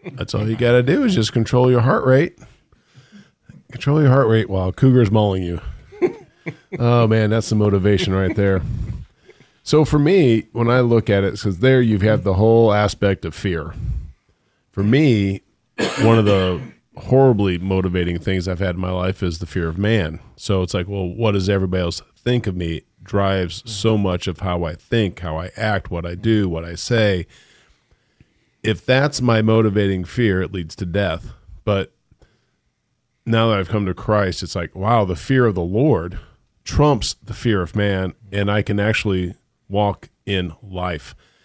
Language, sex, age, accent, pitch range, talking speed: English, male, 40-59, American, 90-115 Hz, 185 wpm